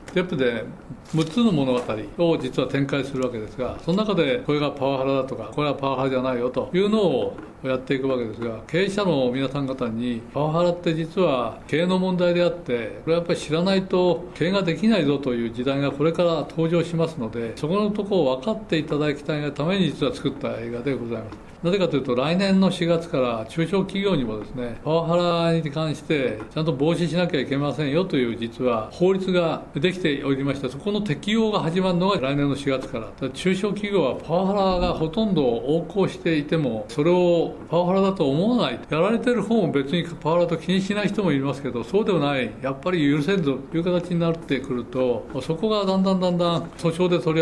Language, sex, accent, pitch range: Japanese, male, native, 130-175 Hz